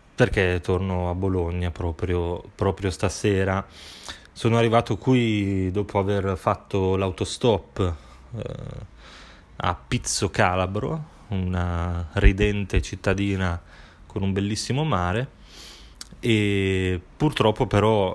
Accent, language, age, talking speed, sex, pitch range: native, Italian, 20-39, 90 wpm, male, 90-105 Hz